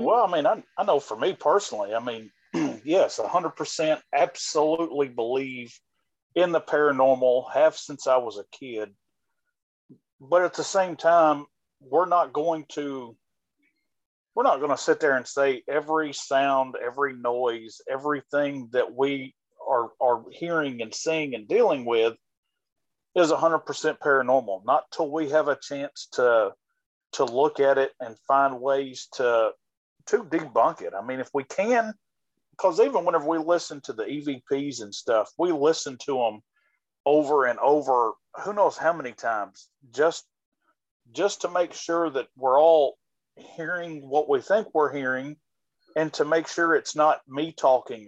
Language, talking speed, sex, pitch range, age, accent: English, 155 wpm, male, 135-170 Hz, 40-59, American